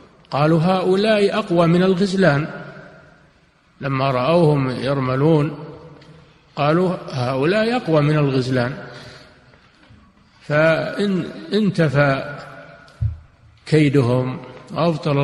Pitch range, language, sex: 135-170 Hz, Arabic, male